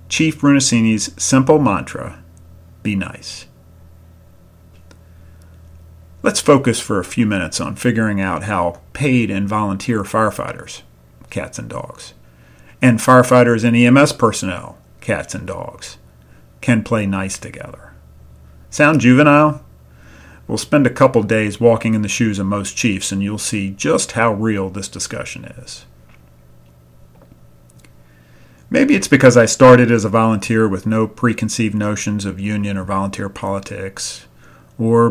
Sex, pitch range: male, 85-115 Hz